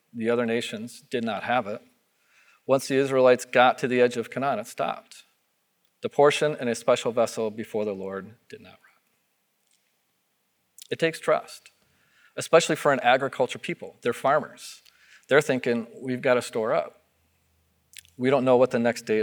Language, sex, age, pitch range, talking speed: English, male, 40-59, 120-140 Hz, 170 wpm